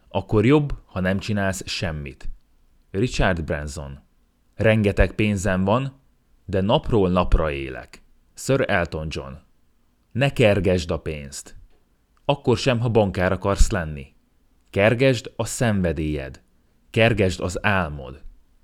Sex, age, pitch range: male, 30-49, 80-115 Hz